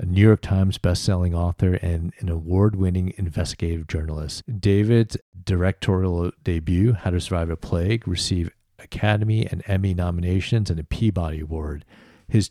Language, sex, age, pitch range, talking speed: English, male, 40-59, 90-105 Hz, 140 wpm